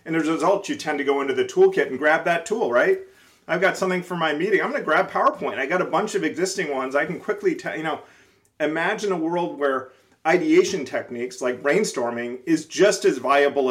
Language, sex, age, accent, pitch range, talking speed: English, male, 30-49, American, 130-195 Hz, 225 wpm